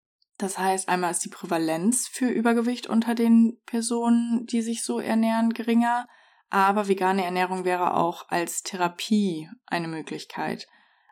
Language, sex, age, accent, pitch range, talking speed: German, female, 20-39, German, 175-215 Hz, 135 wpm